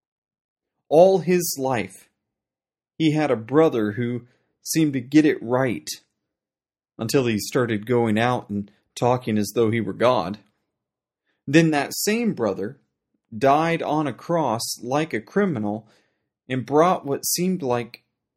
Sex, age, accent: male, 30-49, American